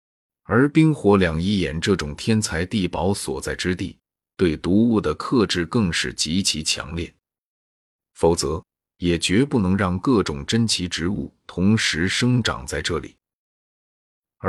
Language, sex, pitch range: Chinese, male, 85-110 Hz